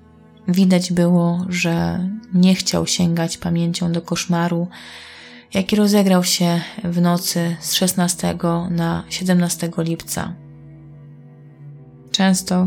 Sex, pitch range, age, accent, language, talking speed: female, 165-185 Hz, 20-39, native, Polish, 95 wpm